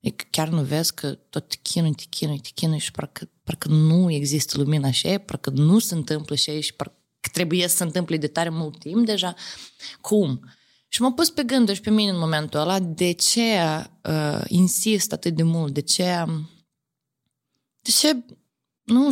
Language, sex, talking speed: Romanian, female, 190 wpm